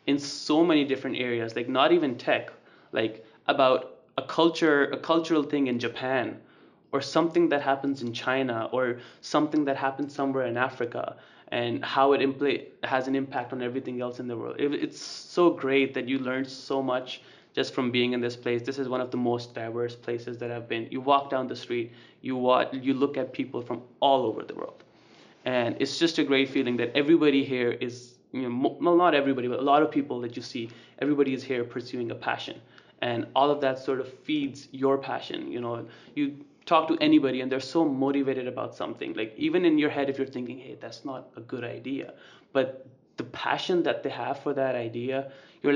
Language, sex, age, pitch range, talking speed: English, male, 20-39, 125-145 Hz, 210 wpm